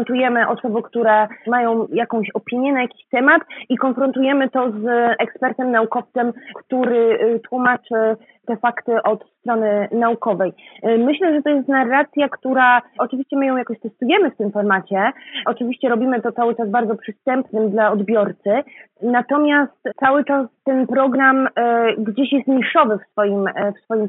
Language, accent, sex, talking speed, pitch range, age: Polish, native, female, 140 wpm, 220-270 Hz, 30-49